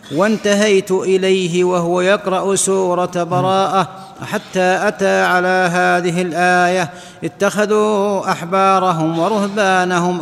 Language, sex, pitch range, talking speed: Arabic, male, 175-190 Hz, 80 wpm